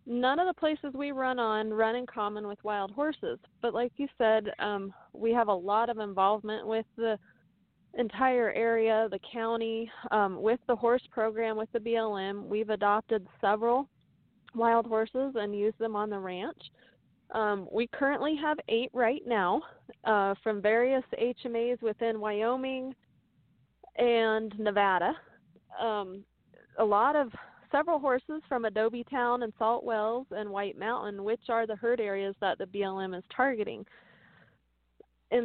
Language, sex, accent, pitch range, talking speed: English, female, American, 210-250 Hz, 150 wpm